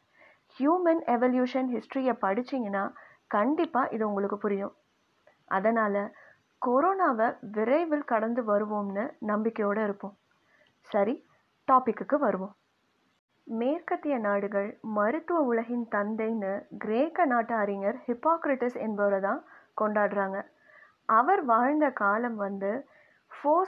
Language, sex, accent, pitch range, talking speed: Tamil, female, native, 210-280 Hz, 90 wpm